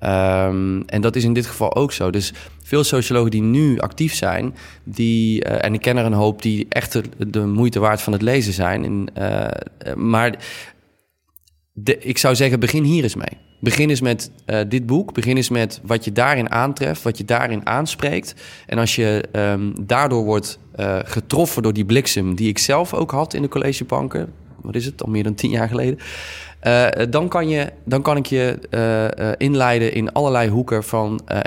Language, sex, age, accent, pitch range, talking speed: Dutch, male, 20-39, Dutch, 100-125 Hz, 195 wpm